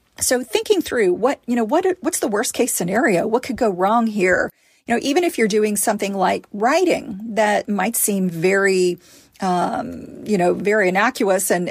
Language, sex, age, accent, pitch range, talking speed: English, female, 40-59, American, 190-230 Hz, 185 wpm